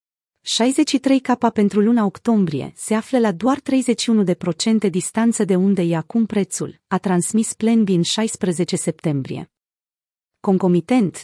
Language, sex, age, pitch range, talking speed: Romanian, female, 30-49, 185-230 Hz, 130 wpm